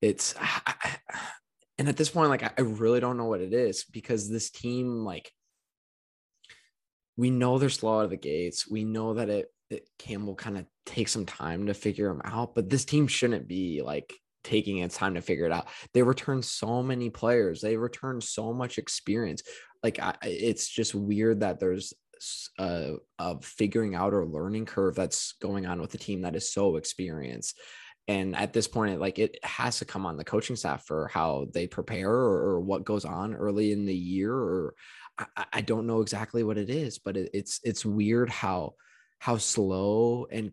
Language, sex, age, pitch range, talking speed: English, male, 20-39, 95-120 Hz, 195 wpm